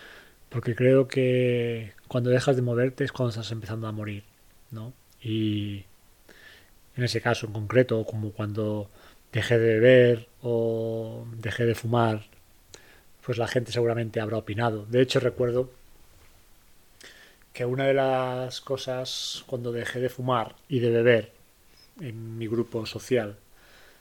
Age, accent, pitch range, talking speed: 30-49, Spanish, 110-125 Hz, 135 wpm